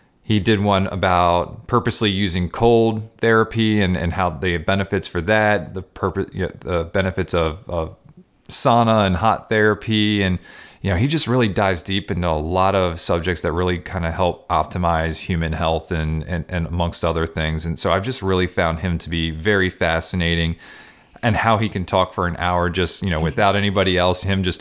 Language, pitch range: English, 85-100 Hz